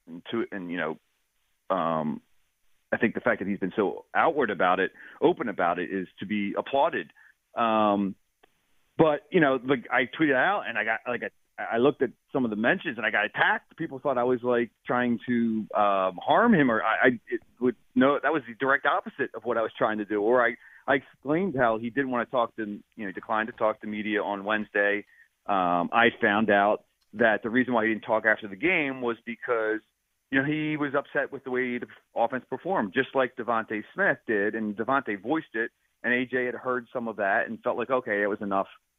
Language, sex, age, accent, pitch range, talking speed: English, male, 30-49, American, 105-130 Hz, 220 wpm